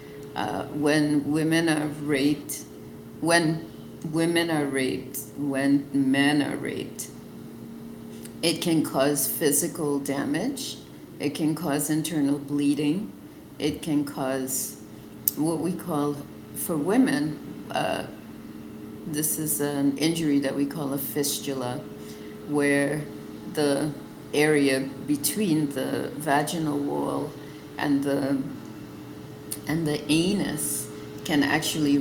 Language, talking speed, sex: English, 105 wpm, female